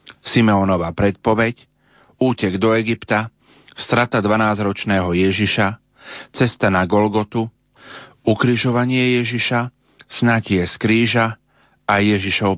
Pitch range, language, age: 100-115 Hz, Slovak, 40-59